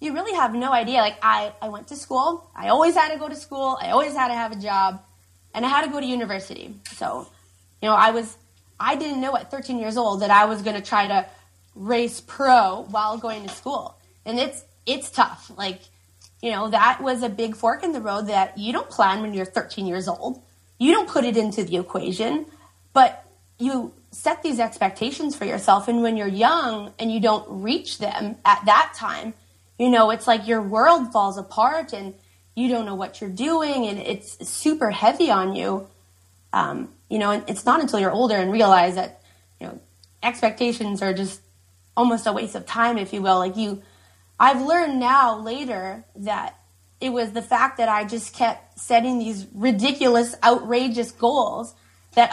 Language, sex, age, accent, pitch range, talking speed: English, female, 20-39, American, 190-245 Hz, 200 wpm